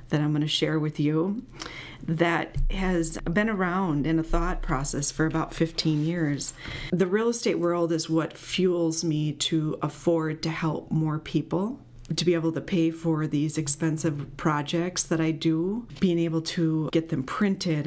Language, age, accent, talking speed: English, 40-59, American, 170 wpm